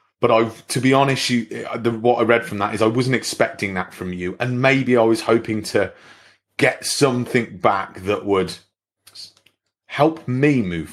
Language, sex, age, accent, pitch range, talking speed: English, male, 30-49, British, 100-135 Hz, 180 wpm